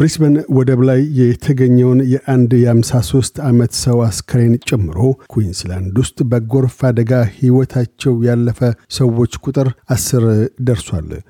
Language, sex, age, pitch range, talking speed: Amharic, male, 50-69, 115-130 Hz, 95 wpm